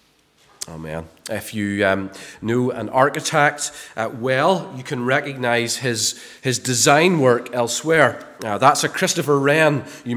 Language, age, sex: English, 30-49, male